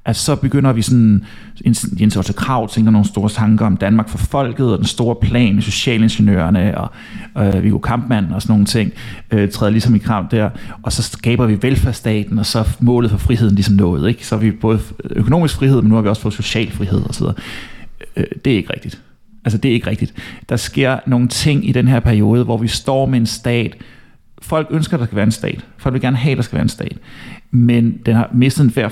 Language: Danish